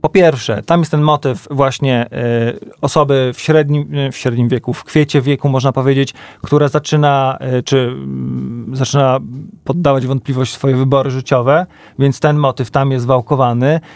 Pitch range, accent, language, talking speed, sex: 125-145 Hz, native, Polish, 155 wpm, male